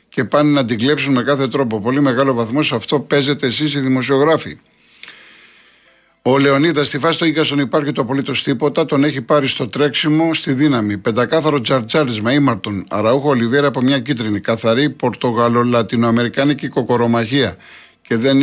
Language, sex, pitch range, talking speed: Greek, male, 110-145 Hz, 155 wpm